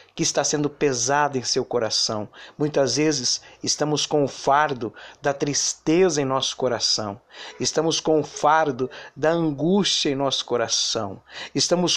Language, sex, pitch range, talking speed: Portuguese, male, 145-185 Hz, 140 wpm